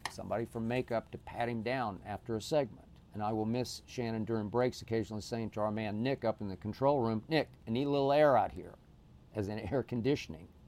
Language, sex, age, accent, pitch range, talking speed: English, male, 50-69, American, 85-115 Hz, 225 wpm